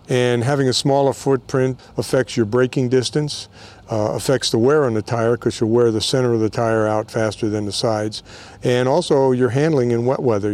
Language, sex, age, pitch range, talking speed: English, male, 50-69, 110-130 Hz, 205 wpm